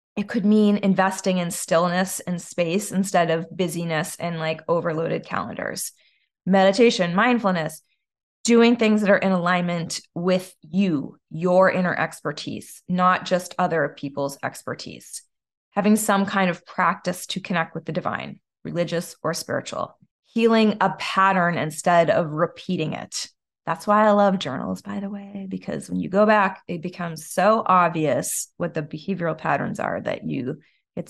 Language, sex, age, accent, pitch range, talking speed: English, female, 20-39, American, 170-200 Hz, 150 wpm